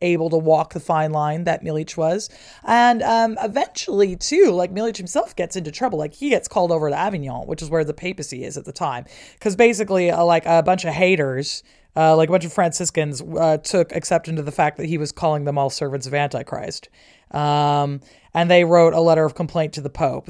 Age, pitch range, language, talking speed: 20-39, 145-180 Hz, English, 220 wpm